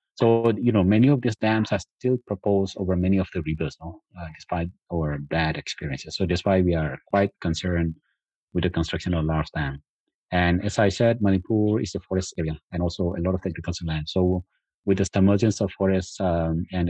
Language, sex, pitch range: Telugu, male, 80-95 Hz